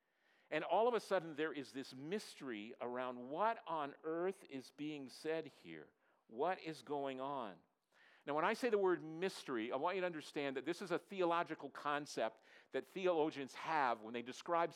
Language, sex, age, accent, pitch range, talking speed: English, male, 50-69, American, 135-175 Hz, 185 wpm